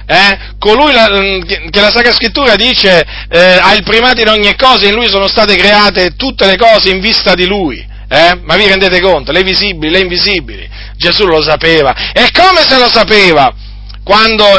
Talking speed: 185 wpm